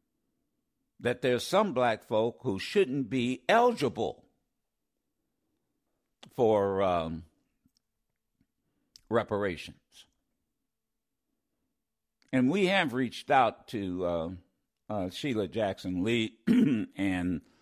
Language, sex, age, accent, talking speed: English, male, 60-79, American, 80 wpm